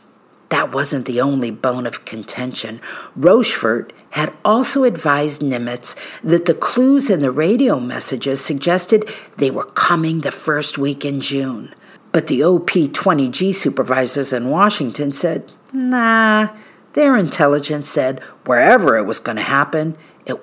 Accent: American